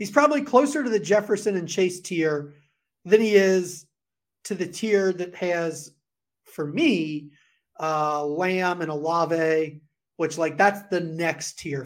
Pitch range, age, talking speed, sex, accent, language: 150-190 Hz, 30-49, 145 wpm, male, American, English